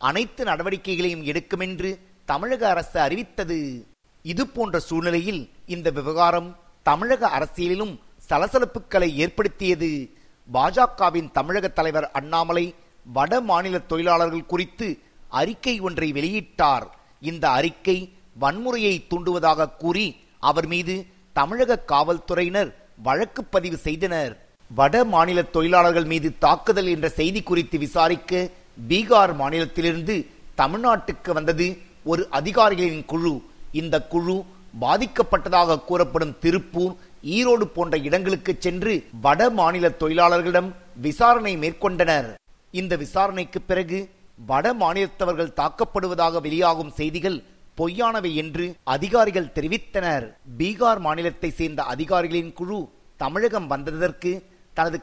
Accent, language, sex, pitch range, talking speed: native, Tamil, male, 160-190 Hz, 95 wpm